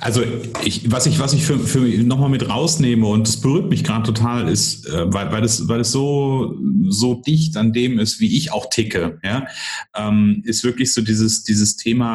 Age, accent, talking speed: 30-49, German, 210 wpm